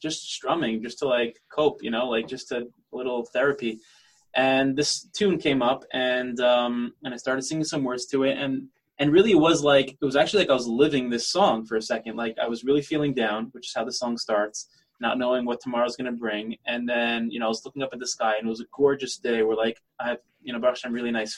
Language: English